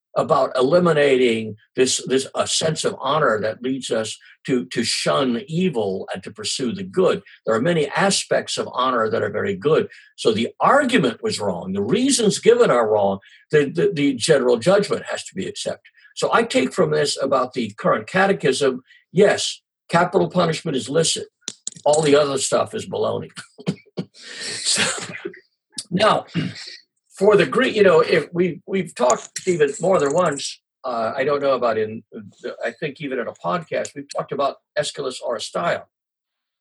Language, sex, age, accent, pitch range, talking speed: English, male, 50-69, American, 125-195 Hz, 165 wpm